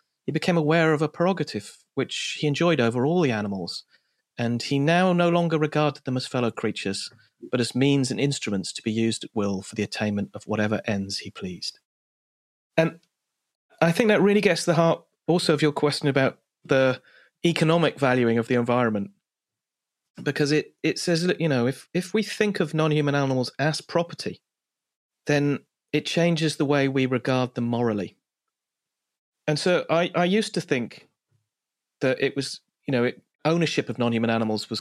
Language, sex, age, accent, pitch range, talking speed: English, male, 40-59, British, 110-150 Hz, 180 wpm